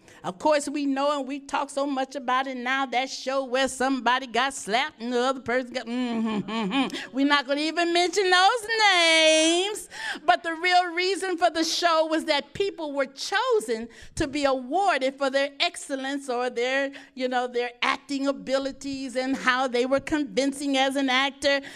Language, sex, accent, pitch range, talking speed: English, female, American, 265-350 Hz, 180 wpm